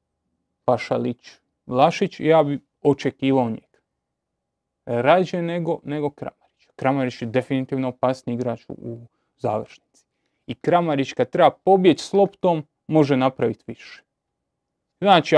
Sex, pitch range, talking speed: male, 125-150 Hz, 115 wpm